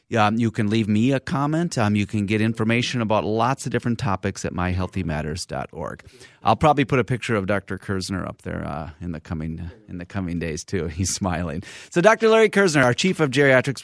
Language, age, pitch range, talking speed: English, 30-49, 105-145 Hz, 210 wpm